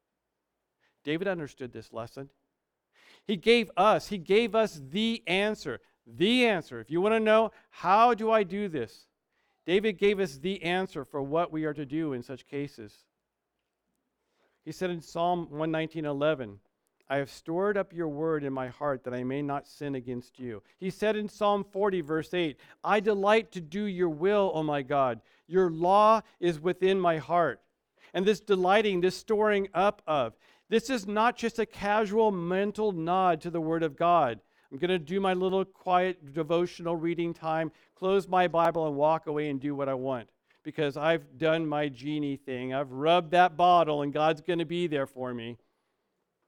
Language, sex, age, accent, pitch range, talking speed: English, male, 50-69, American, 145-190 Hz, 180 wpm